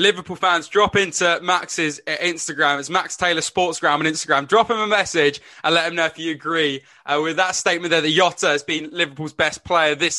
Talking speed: 210 wpm